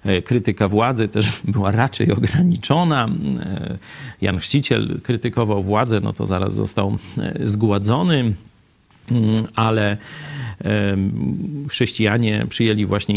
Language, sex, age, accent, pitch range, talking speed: Polish, male, 40-59, native, 105-130 Hz, 85 wpm